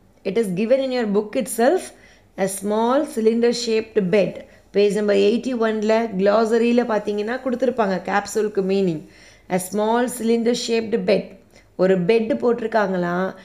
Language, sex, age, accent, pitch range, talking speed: Tamil, female, 20-39, native, 195-240 Hz, 130 wpm